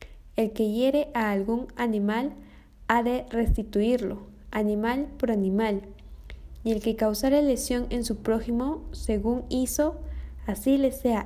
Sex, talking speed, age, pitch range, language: female, 135 wpm, 20-39, 205-255 Hz, Spanish